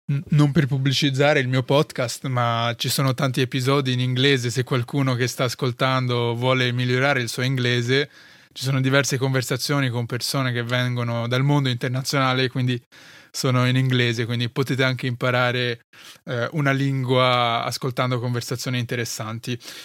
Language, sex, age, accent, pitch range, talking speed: Italian, male, 20-39, native, 125-150 Hz, 145 wpm